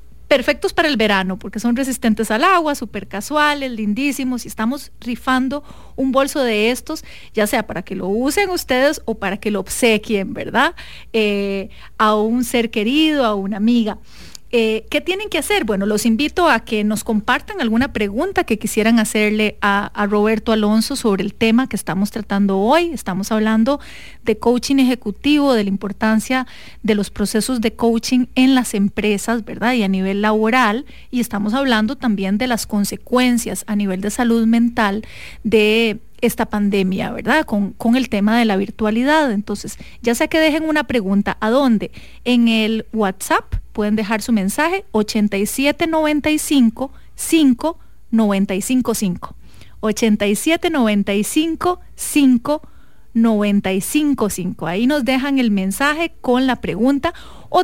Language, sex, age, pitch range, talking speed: Spanish, female, 40-59, 210-265 Hz, 155 wpm